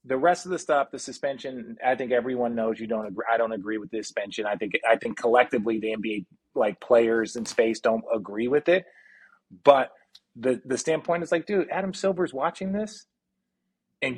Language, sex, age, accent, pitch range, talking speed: English, male, 30-49, American, 125-170 Hz, 200 wpm